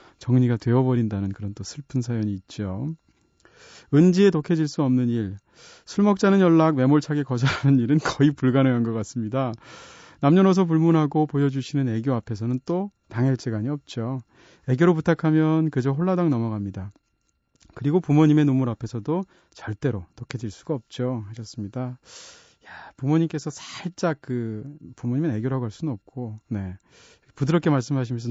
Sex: male